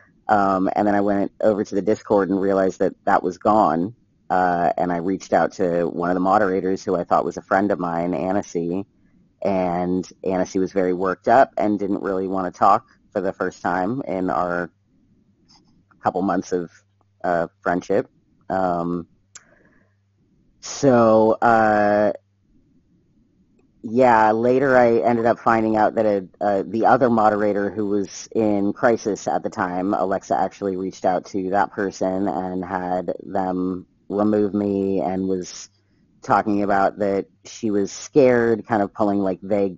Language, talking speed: English, 160 wpm